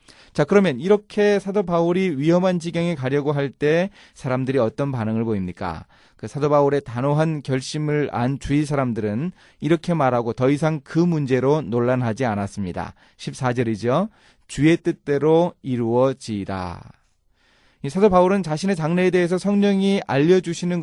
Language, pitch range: Korean, 120-170 Hz